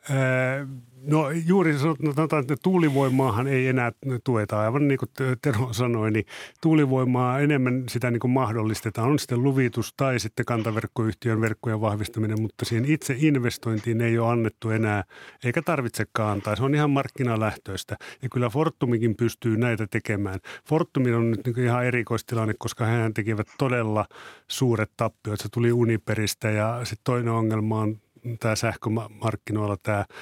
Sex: male